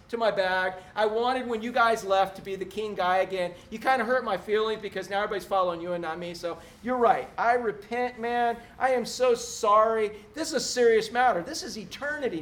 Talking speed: 225 wpm